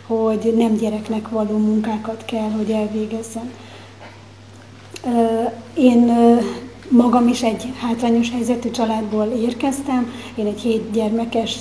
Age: 30-49